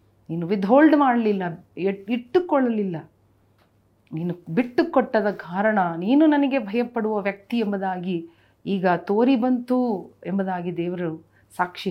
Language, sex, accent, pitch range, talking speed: Kannada, female, native, 185-235 Hz, 95 wpm